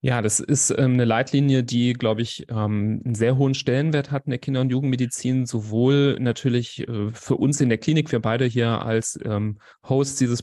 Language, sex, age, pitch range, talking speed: German, male, 30-49, 110-130 Hz, 200 wpm